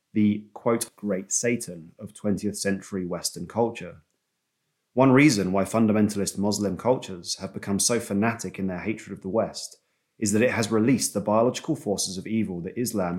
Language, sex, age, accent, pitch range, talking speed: English, male, 30-49, British, 95-120 Hz, 170 wpm